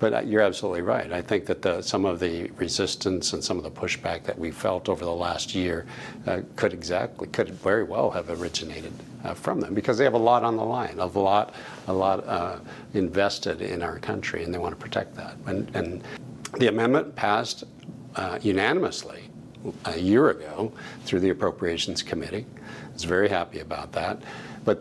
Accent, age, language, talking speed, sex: American, 60-79, English, 190 wpm, male